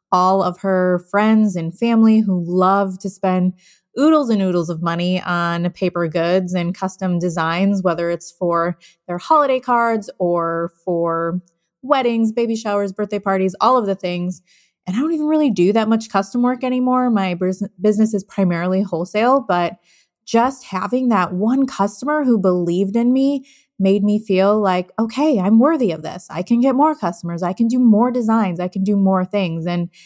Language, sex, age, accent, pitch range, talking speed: English, female, 20-39, American, 175-215 Hz, 180 wpm